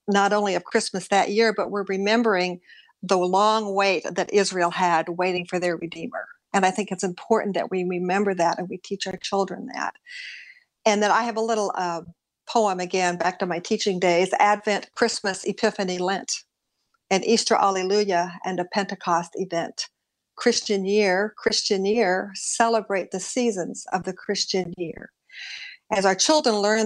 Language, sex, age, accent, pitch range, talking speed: English, female, 60-79, American, 180-210 Hz, 165 wpm